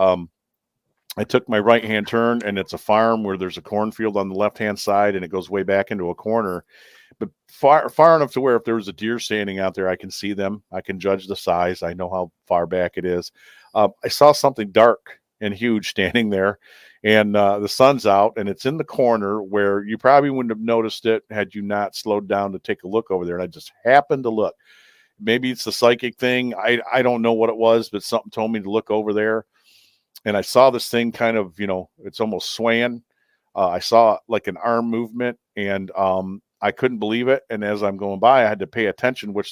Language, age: English, 50-69